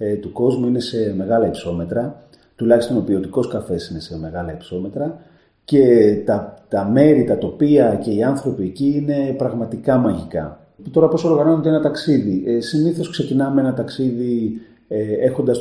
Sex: male